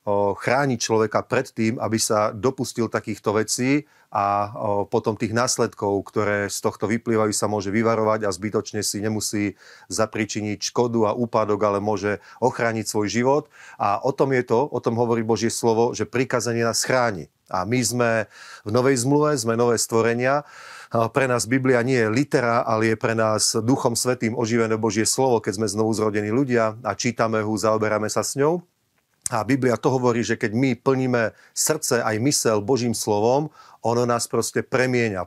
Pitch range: 110-120 Hz